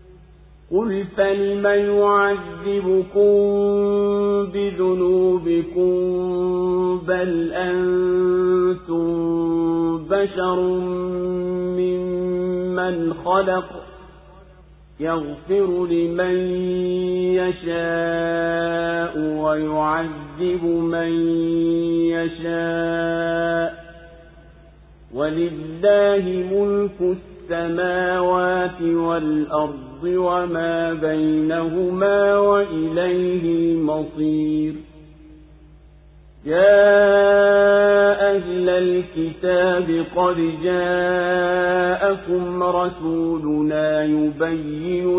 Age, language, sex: 50-69, Swahili, male